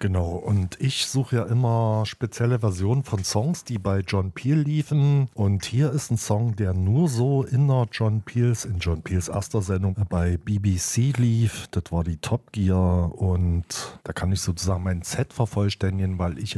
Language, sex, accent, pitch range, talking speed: German, male, German, 95-120 Hz, 180 wpm